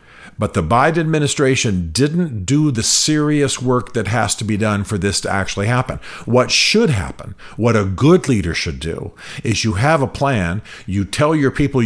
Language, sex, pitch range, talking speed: English, male, 95-120 Hz, 185 wpm